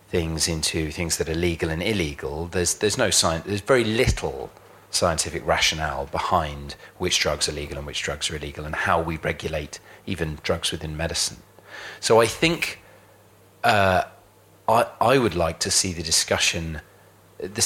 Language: English